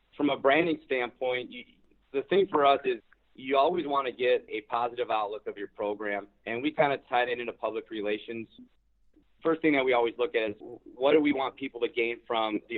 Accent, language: American, English